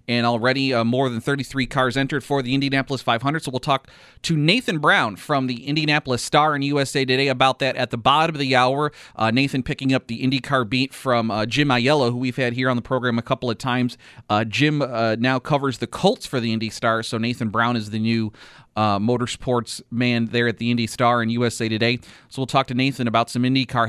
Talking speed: 230 wpm